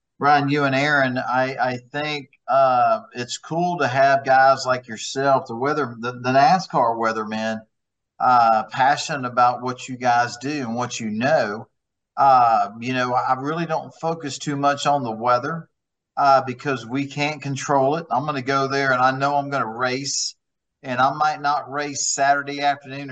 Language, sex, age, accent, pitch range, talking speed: English, male, 40-59, American, 125-145 Hz, 180 wpm